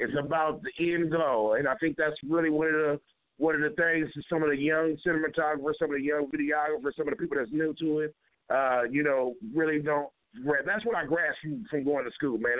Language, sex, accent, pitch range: English, male, American, 150-190 Hz